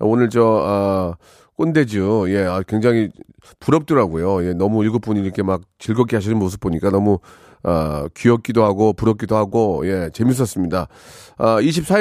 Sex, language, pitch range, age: male, Korean, 100-135 Hz, 40-59